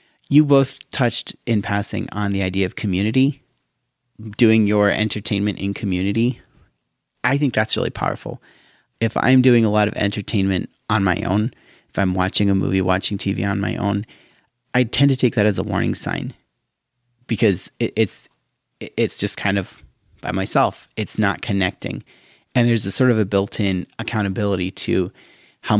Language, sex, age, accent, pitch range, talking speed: English, male, 30-49, American, 95-120 Hz, 165 wpm